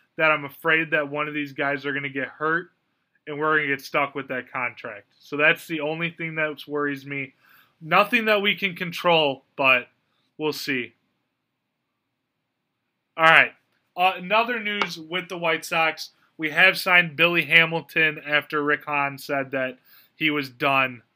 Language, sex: English, male